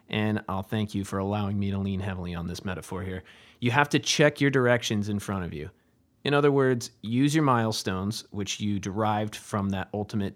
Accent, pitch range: American, 100-130 Hz